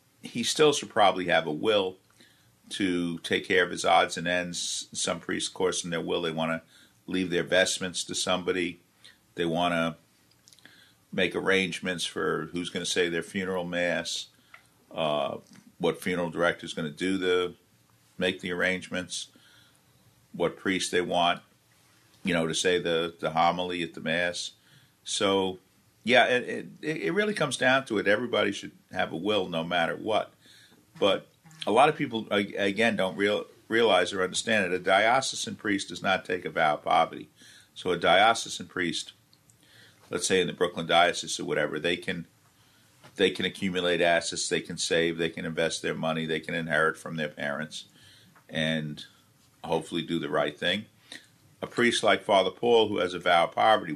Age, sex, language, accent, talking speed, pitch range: 50-69, male, English, American, 175 wpm, 85-95 Hz